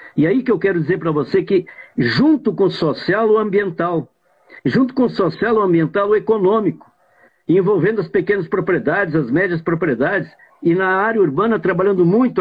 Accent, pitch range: Brazilian, 160-215 Hz